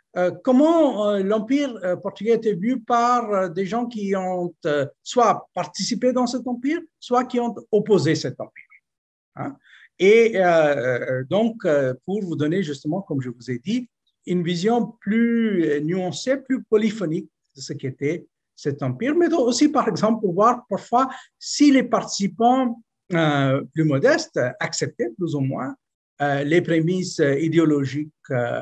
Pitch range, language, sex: 145-225 Hz, French, male